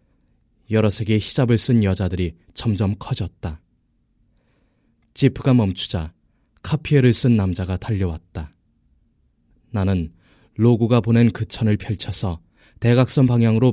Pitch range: 90-120 Hz